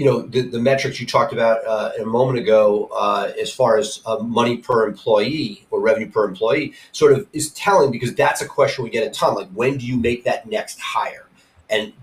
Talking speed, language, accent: 225 wpm, English, American